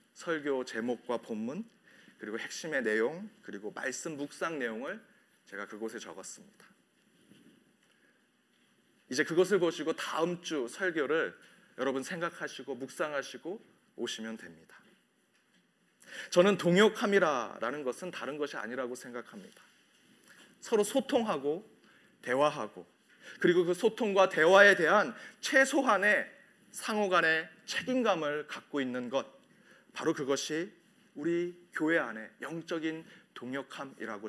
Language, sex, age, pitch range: Korean, male, 30-49, 145-200 Hz